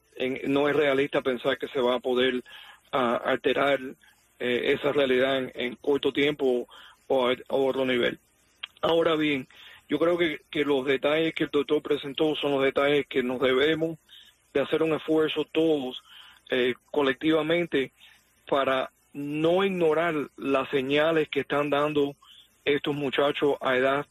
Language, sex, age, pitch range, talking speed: English, male, 40-59, 135-155 Hz, 150 wpm